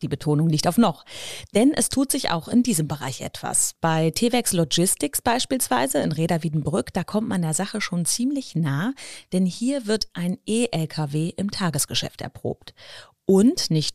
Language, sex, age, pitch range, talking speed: German, female, 30-49, 155-225 Hz, 165 wpm